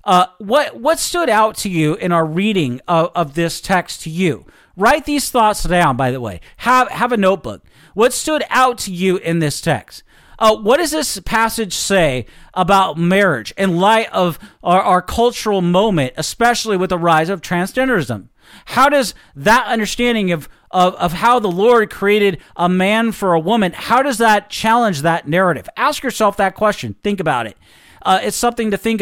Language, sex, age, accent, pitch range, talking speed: English, male, 40-59, American, 175-230 Hz, 185 wpm